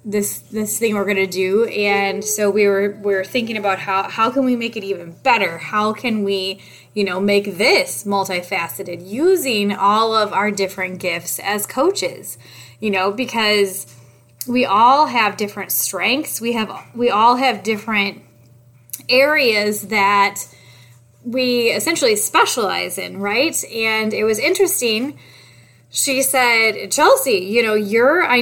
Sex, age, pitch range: female, 20-39, 195-245 Hz